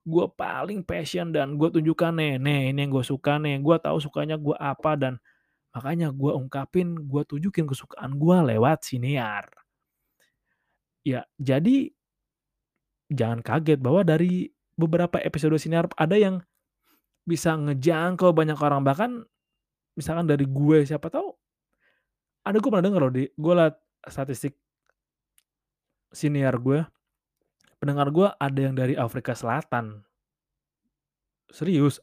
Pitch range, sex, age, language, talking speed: 135-170 Hz, male, 20-39, Indonesian, 125 wpm